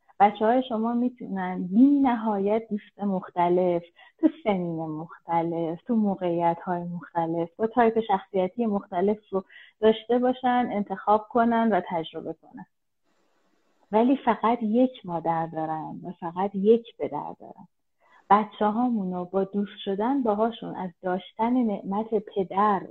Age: 30-49